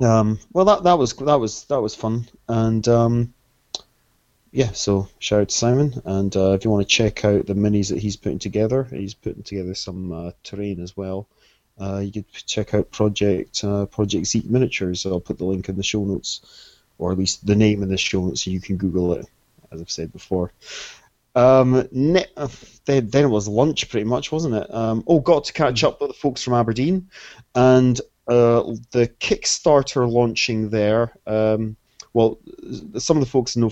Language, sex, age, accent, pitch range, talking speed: English, male, 30-49, British, 100-120 Hz, 200 wpm